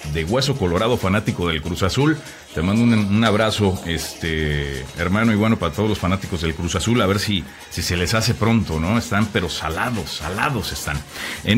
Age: 40-59